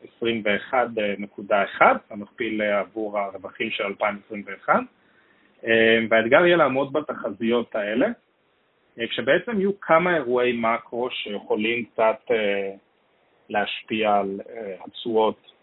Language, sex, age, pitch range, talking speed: Hebrew, male, 30-49, 100-120 Hz, 80 wpm